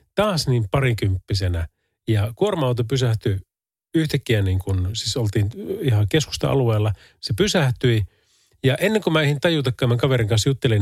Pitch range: 100-140 Hz